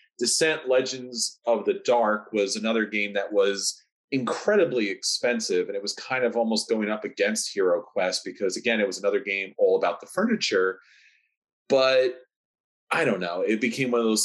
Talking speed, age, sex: 175 wpm, 30-49, male